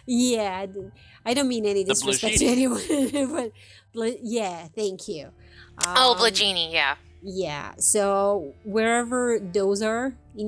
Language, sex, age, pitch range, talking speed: English, female, 30-49, 185-225 Hz, 120 wpm